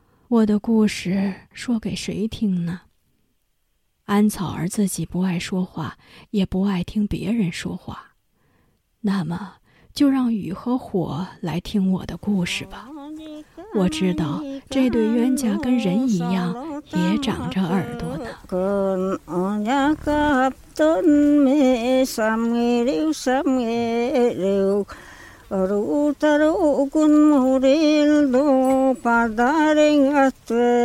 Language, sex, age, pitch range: Chinese, female, 50-69, 200-285 Hz